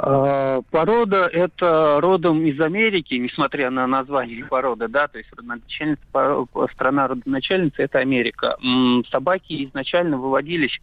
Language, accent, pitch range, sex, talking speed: Russian, native, 125-165 Hz, male, 125 wpm